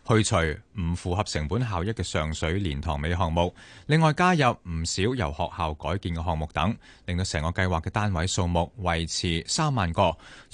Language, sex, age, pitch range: Chinese, male, 20-39, 80-105 Hz